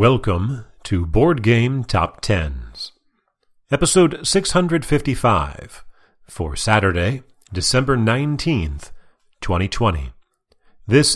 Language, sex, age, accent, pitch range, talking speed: English, male, 40-59, American, 95-130 Hz, 75 wpm